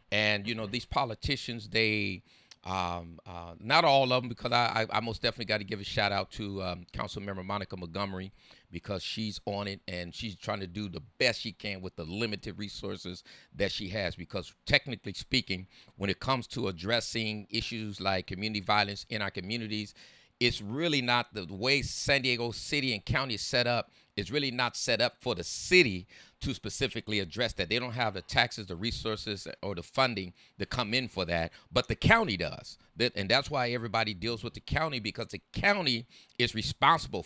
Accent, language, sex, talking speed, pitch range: American, English, male, 195 wpm, 100-120 Hz